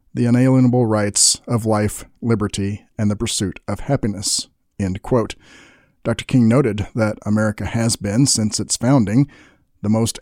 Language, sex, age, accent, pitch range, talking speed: English, male, 40-59, American, 100-125 Hz, 145 wpm